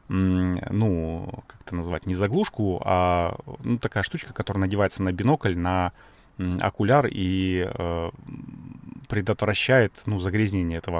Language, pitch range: Russian, 90-115 Hz